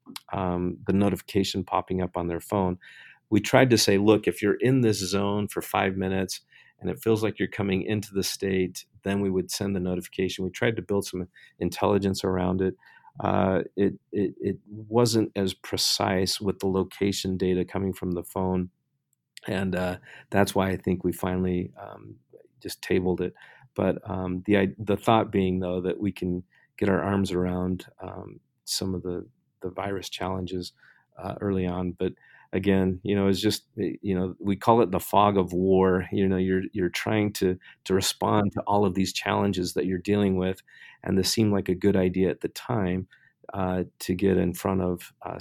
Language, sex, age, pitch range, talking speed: English, male, 40-59, 90-100 Hz, 190 wpm